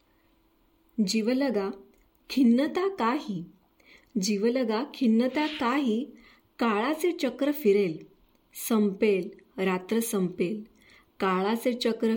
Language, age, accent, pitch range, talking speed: Marathi, 20-39, native, 205-260 Hz, 70 wpm